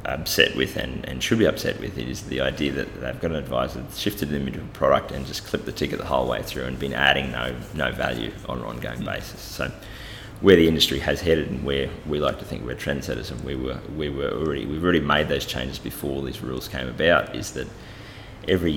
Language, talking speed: English, 235 wpm